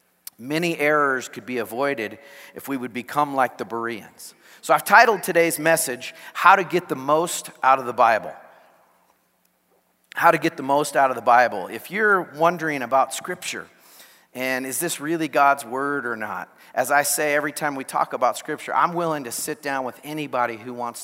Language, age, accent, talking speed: English, 40-59, American, 190 wpm